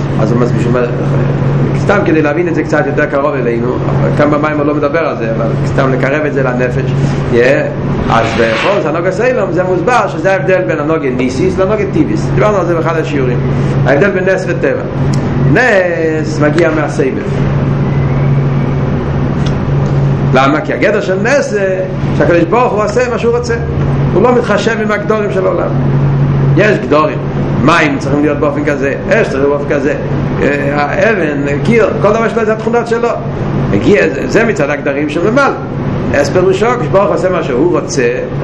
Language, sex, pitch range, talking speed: Hebrew, male, 140-195 Hz, 165 wpm